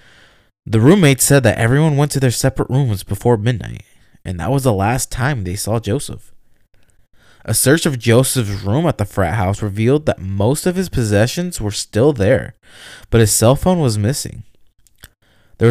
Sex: male